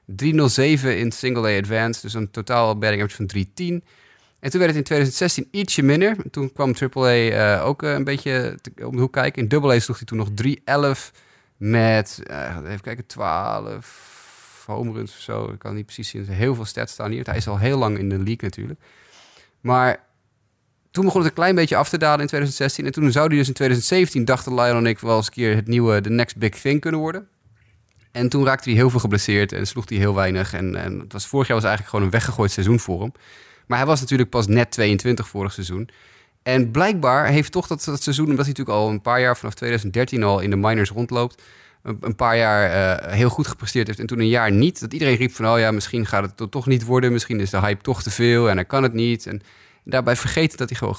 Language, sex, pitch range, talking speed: Dutch, male, 105-135 Hz, 235 wpm